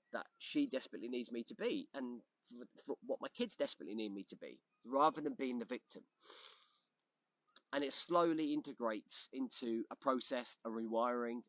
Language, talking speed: English, 165 wpm